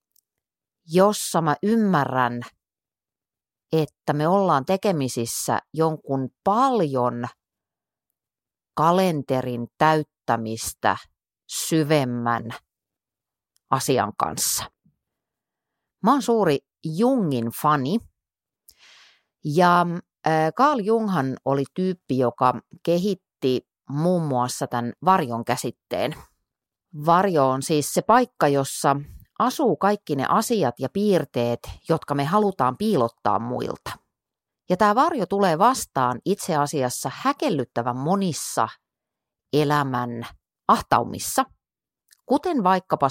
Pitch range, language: 130-200 Hz, Finnish